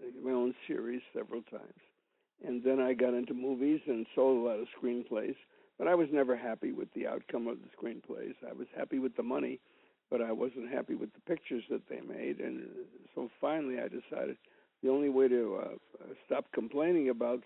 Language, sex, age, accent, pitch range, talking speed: English, male, 60-79, American, 120-135 Hz, 195 wpm